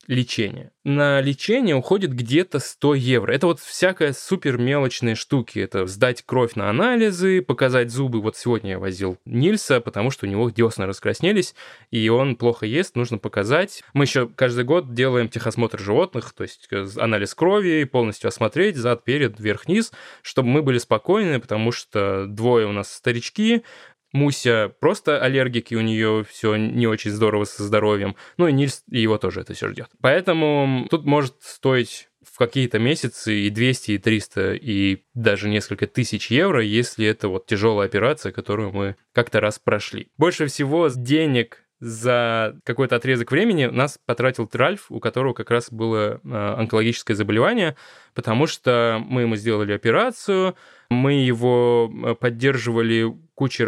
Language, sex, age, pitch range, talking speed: Russian, male, 20-39, 110-135 Hz, 155 wpm